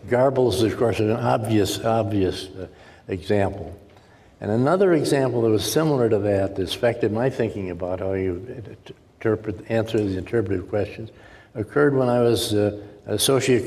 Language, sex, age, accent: English, male, 60-79, American